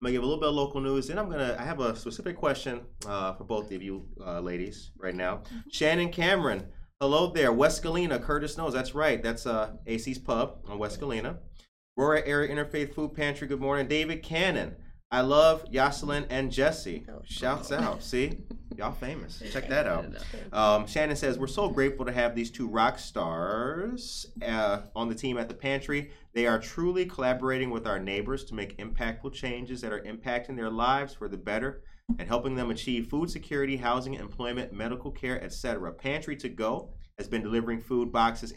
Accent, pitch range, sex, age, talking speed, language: American, 110-140 Hz, male, 30-49, 195 wpm, English